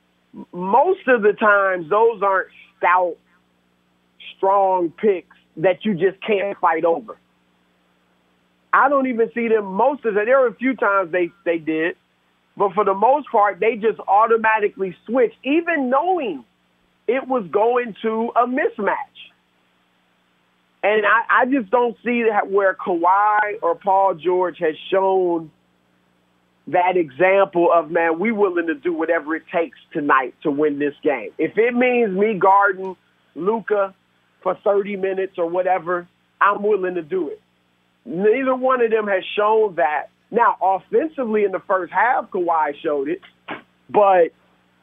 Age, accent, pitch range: 40-59, American, 160-220 Hz